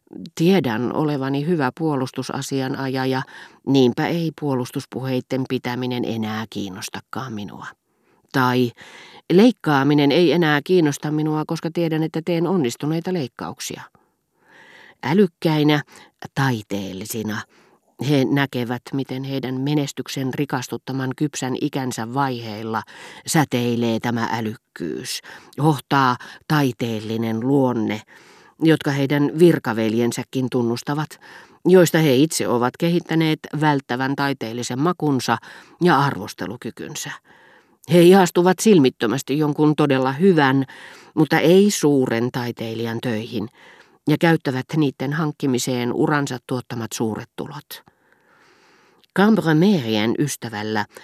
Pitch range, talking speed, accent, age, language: 120-155 Hz, 90 wpm, native, 40-59, Finnish